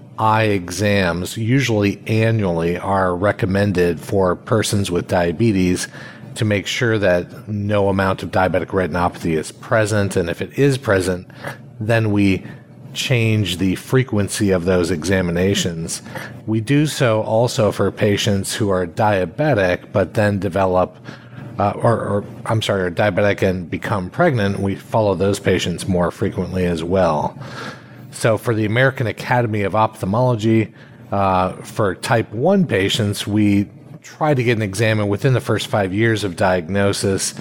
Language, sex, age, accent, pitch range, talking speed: English, male, 40-59, American, 95-115 Hz, 145 wpm